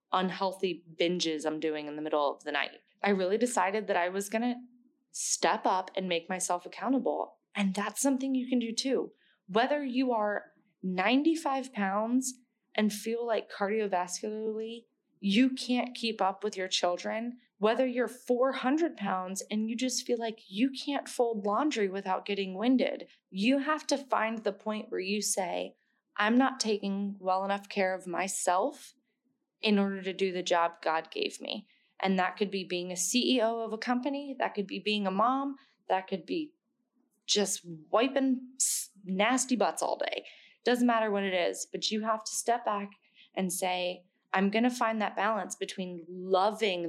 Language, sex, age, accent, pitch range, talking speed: English, female, 20-39, American, 185-245 Hz, 170 wpm